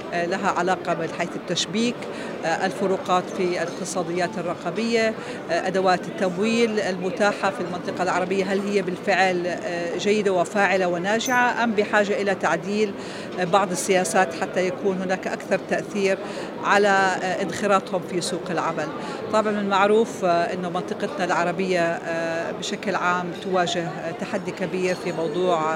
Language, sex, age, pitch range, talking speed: Arabic, female, 40-59, 175-200 Hz, 115 wpm